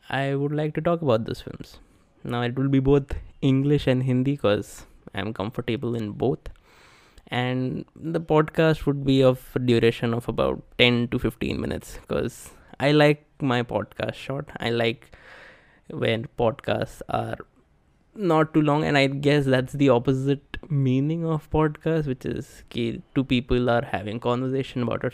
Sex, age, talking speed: male, 20-39, 160 wpm